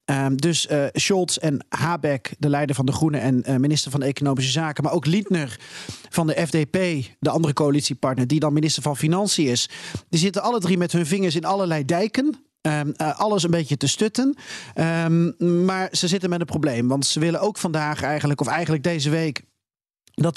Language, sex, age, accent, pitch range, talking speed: Dutch, male, 40-59, Dutch, 145-180 Hz, 195 wpm